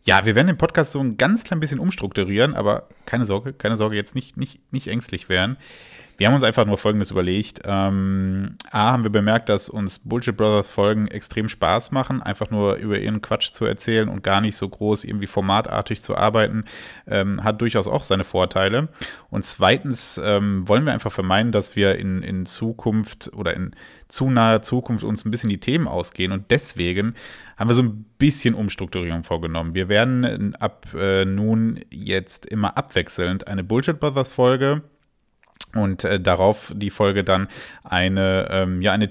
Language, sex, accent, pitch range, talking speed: German, male, German, 95-115 Hz, 180 wpm